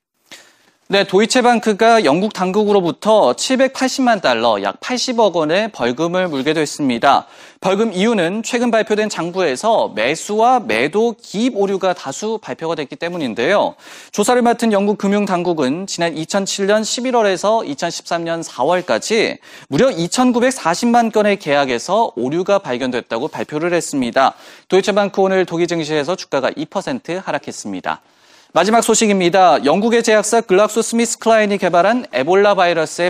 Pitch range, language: 165-225 Hz, Korean